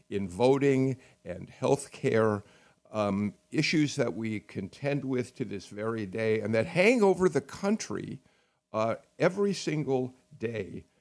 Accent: American